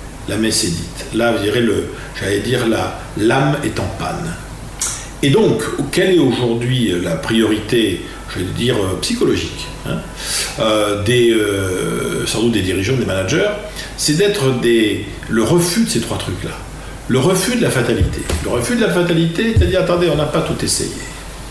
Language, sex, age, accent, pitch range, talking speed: French, male, 50-69, French, 105-150 Hz, 170 wpm